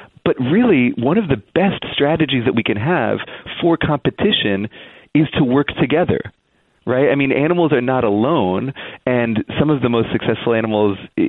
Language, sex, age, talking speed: English, male, 30-49, 165 wpm